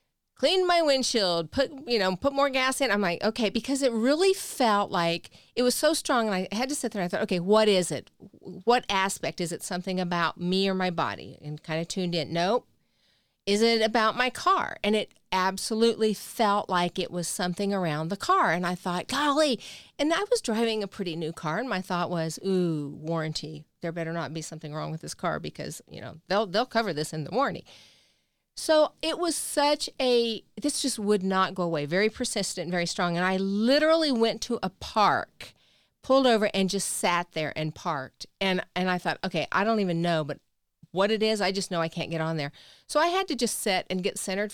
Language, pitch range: English, 175-245 Hz